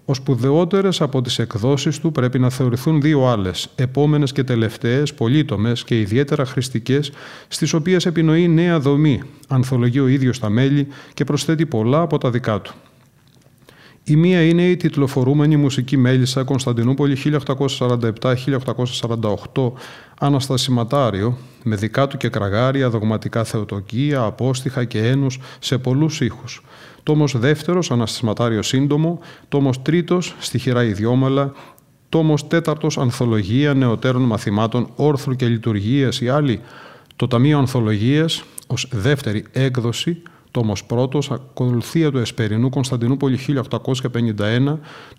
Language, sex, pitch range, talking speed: Greek, male, 120-145 Hz, 115 wpm